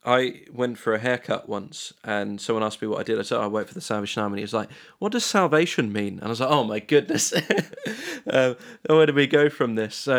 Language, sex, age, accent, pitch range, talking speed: English, male, 20-39, British, 110-130 Hz, 260 wpm